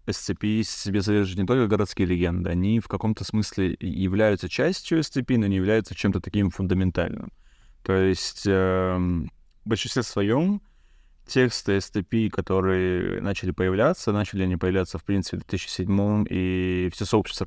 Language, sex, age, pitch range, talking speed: Russian, male, 20-39, 95-110 Hz, 140 wpm